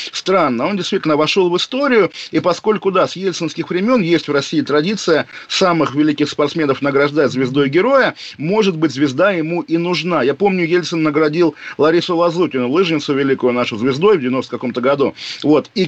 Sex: male